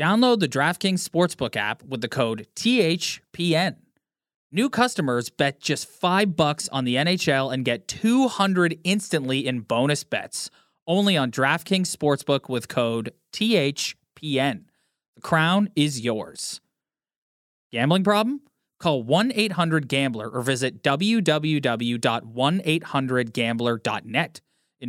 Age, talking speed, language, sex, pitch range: 20-39, 110 wpm, English, male, 130-175 Hz